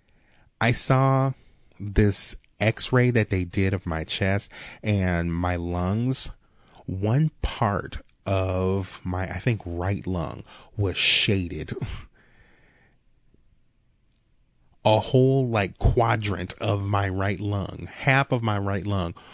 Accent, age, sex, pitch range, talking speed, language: American, 30-49, male, 95-120 Hz, 110 wpm, English